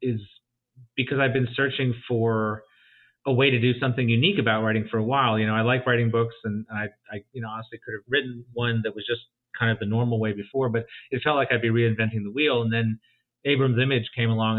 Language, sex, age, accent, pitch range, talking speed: English, male, 30-49, American, 110-130 Hz, 235 wpm